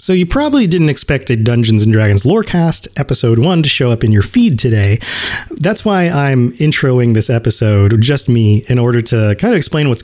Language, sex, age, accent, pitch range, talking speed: English, male, 30-49, American, 105-140 Hz, 210 wpm